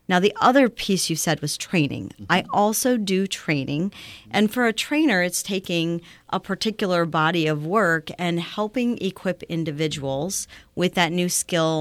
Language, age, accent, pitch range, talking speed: English, 40-59, American, 150-185 Hz, 160 wpm